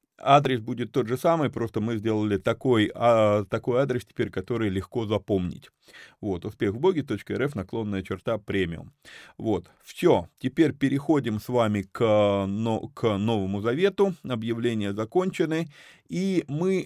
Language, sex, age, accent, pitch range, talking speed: Russian, male, 30-49, native, 105-140 Hz, 130 wpm